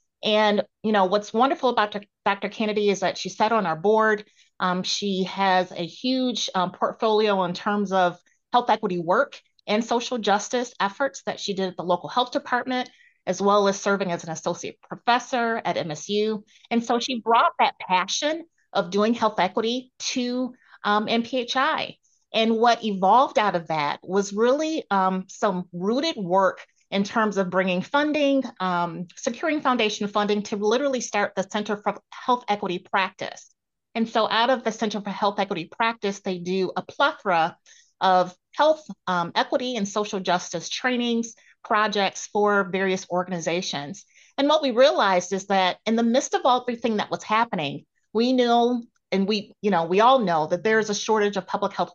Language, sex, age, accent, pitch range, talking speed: English, female, 30-49, American, 190-245 Hz, 170 wpm